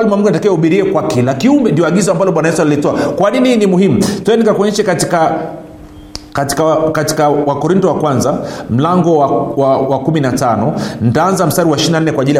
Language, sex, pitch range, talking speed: Swahili, male, 145-205 Hz, 150 wpm